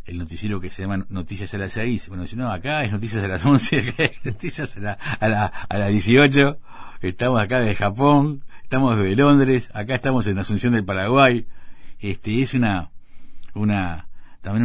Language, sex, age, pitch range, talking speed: Spanish, male, 50-69, 95-115 Hz, 190 wpm